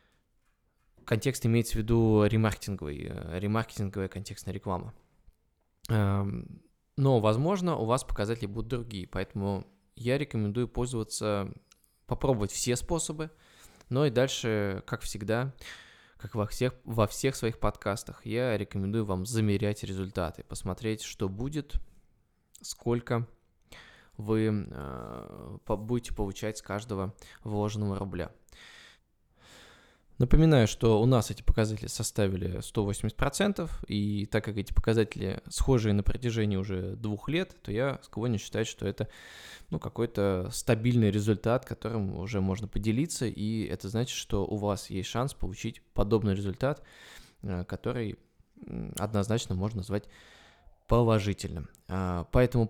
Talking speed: 115 wpm